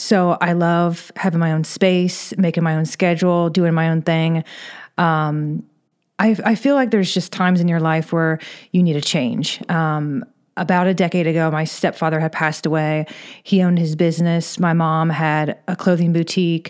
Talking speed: 185 wpm